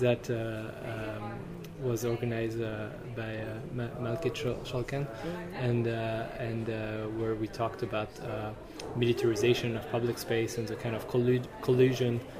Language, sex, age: English, male, 20-39